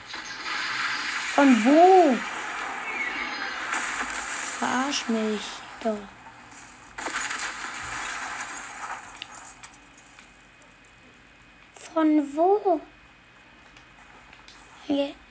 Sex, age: female, 20-39